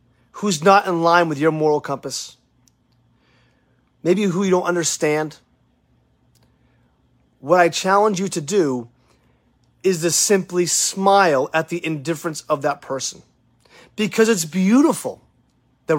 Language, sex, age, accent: English, male, 30-49, American